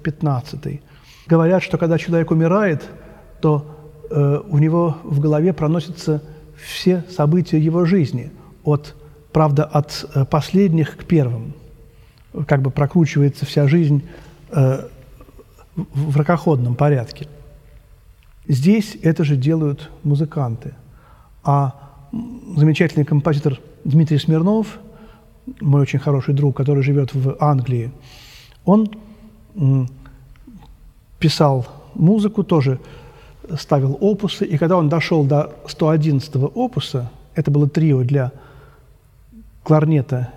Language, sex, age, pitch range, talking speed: Russian, male, 40-59, 140-170 Hz, 100 wpm